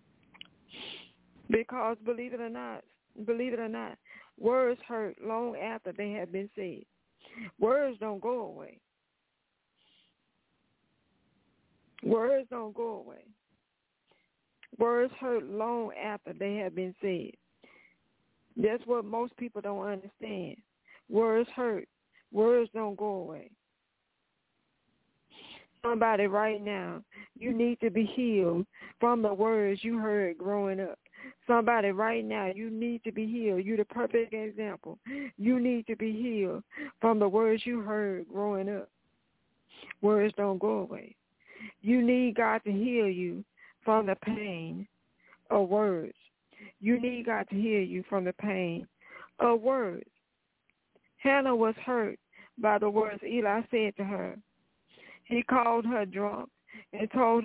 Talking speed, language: 130 wpm, English